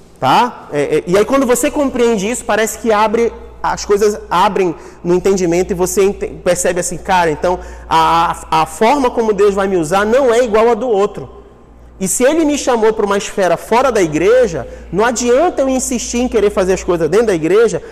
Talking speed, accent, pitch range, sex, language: 205 wpm, Brazilian, 180-245 Hz, male, Portuguese